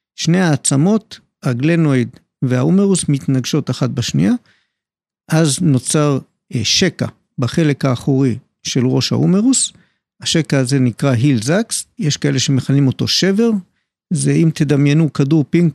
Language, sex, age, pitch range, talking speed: Hebrew, male, 50-69, 135-180 Hz, 115 wpm